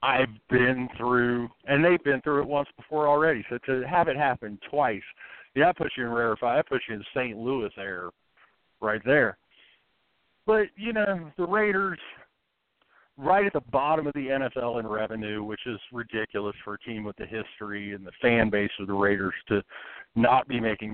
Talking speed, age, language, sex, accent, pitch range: 190 wpm, 50-69, English, male, American, 115-160 Hz